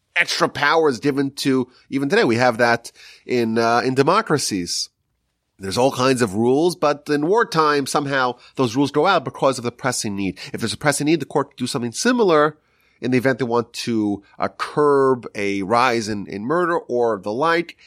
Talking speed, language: 200 wpm, English